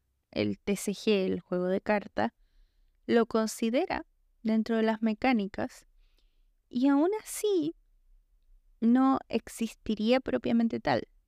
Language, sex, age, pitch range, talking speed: Spanish, female, 20-39, 185-270 Hz, 100 wpm